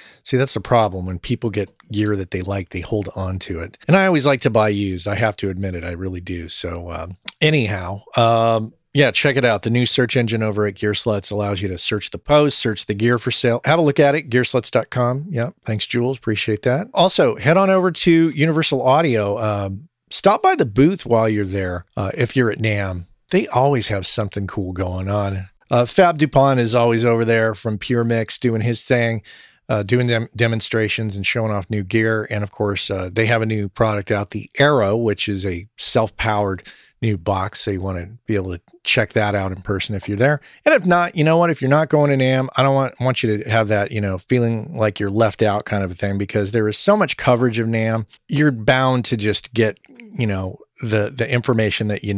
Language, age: English, 40-59